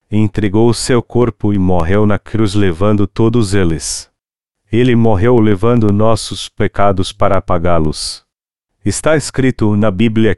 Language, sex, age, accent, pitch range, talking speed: Portuguese, male, 40-59, Brazilian, 95-110 Hz, 125 wpm